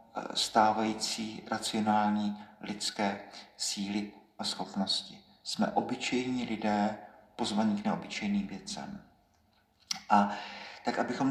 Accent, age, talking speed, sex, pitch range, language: native, 50-69, 85 wpm, male, 110-130 Hz, Czech